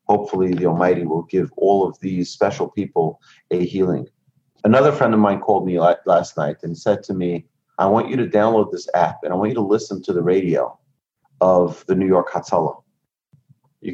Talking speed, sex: 200 wpm, male